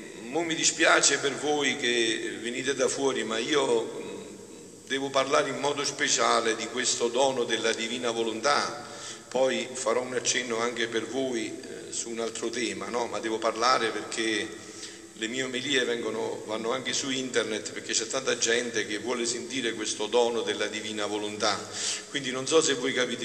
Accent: native